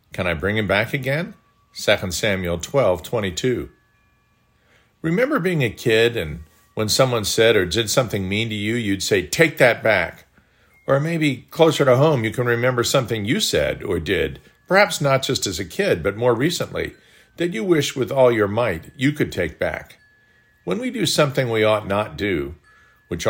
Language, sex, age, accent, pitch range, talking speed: English, male, 50-69, American, 105-135 Hz, 185 wpm